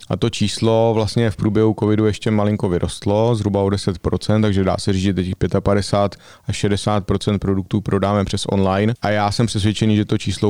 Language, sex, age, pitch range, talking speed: Slovak, male, 30-49, 100-110 Hz, 190 wpm